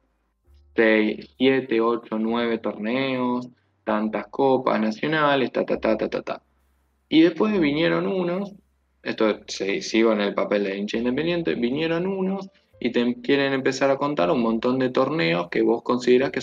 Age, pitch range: 20-39, 105-140 Hz